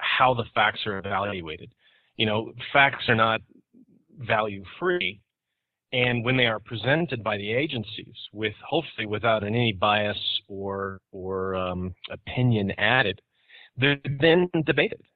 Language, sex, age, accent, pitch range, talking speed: English, male, 40-59, American, 105-135 Hz, 125 wpm